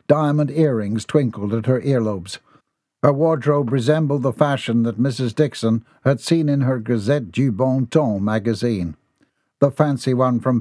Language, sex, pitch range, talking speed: English, male, 115-145 Hz, 155 wpm